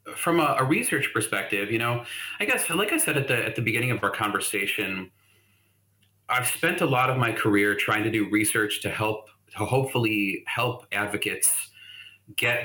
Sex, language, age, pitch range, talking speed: male, English, 30-49, 100-125 Hz, 180 wpm